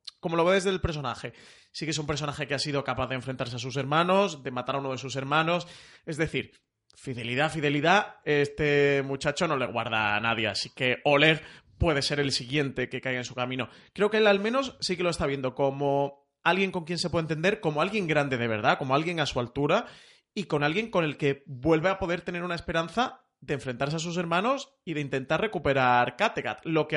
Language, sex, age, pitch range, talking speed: Spanish, male, 30-49, 130-160 Hz, 225 wpm